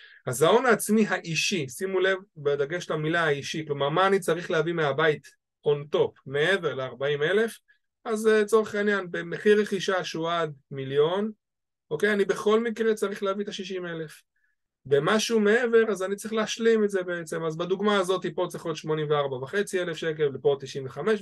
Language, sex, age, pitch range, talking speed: Hebrew, male, 20-39, 155-215 Hz, 165 wpm